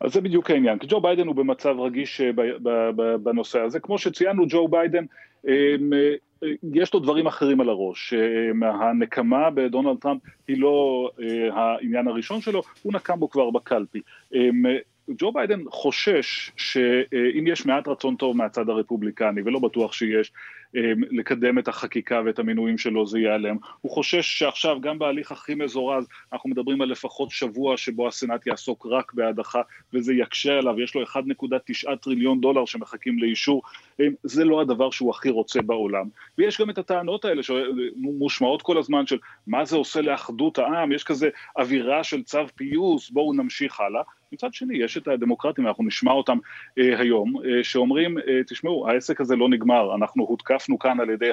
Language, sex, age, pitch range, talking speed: Hebrew, male, 30-49, 120-150 Hz, 160 wpm